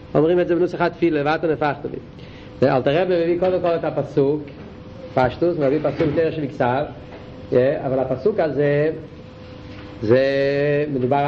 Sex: male